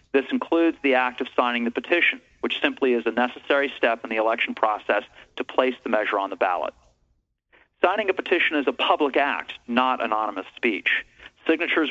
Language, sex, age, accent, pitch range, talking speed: English, male, 40-59, American, 120-140 Hz, 180 wpm